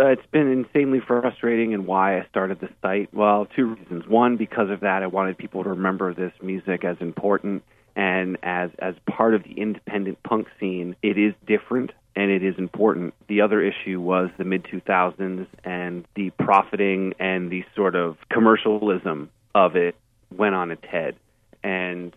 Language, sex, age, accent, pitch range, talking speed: English, male, 30-49, American, 90-105 Hz, 175 wpm